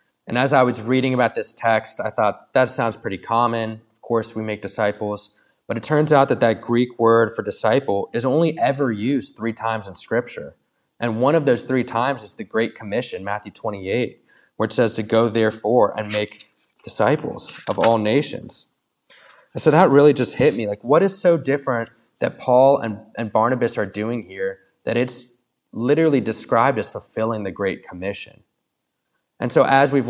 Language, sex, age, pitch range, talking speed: English, male, 20-39, 110-130 Hz, 185 wpm